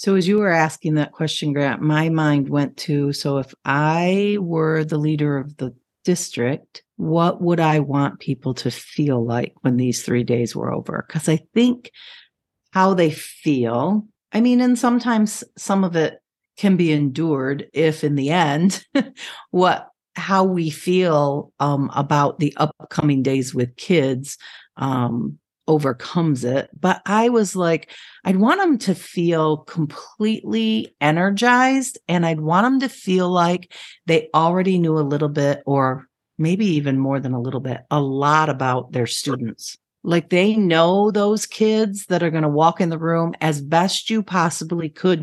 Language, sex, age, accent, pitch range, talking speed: English, female, 50-69, American, 140-185 Hz, 165 wpm